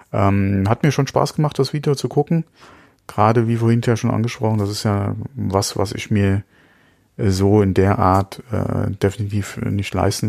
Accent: German